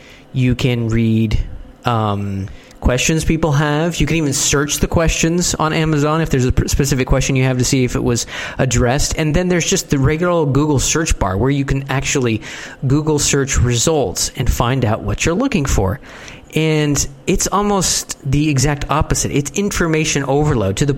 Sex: male